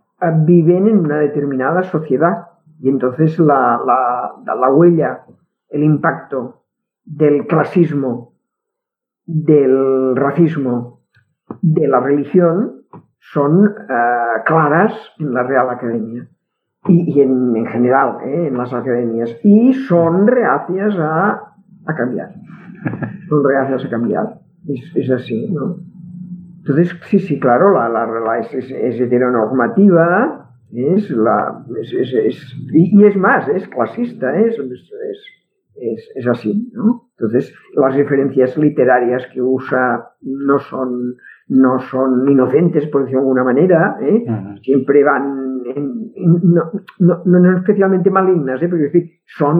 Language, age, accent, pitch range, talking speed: Spanish, 50-69, Spanish, 130-190 Hz, 130 wpm